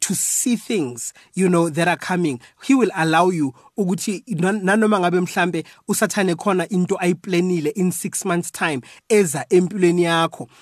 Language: English